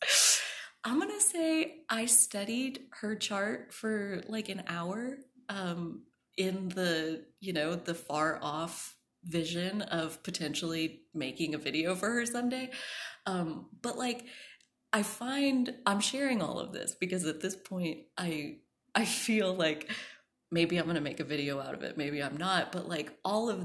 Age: 20-39